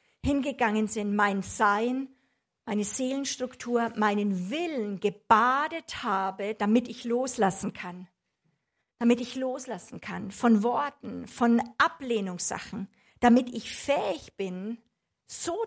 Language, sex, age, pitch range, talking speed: German, female, 50-69, 210-280 Hz, 105 wpm